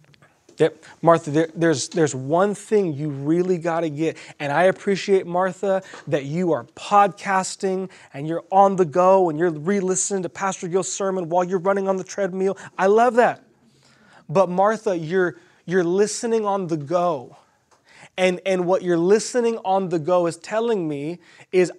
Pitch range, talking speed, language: 155-190 Hz, 170 wpm, English